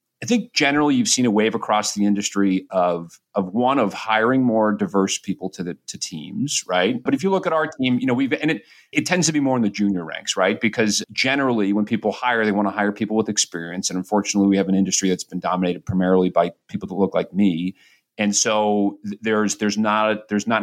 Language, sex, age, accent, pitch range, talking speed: English, male, 40-59, American, 100-135 Hz, 235 wpm